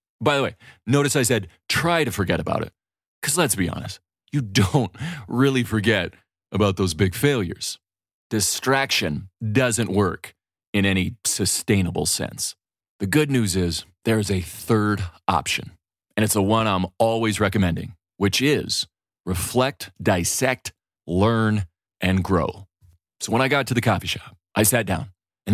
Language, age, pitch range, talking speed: English, 30-49, 95-120 Hz, 155 wpm